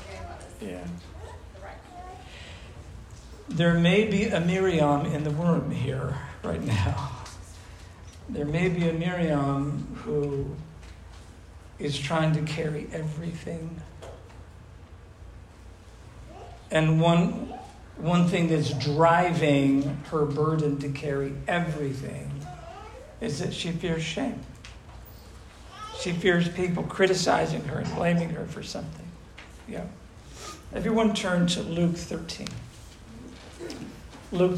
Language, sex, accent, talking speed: English, male, American, 100 wpm